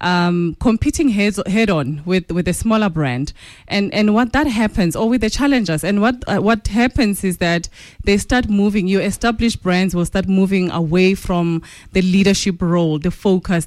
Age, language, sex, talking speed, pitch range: 20-39, English, female, 185 wpm, 170-215 Hz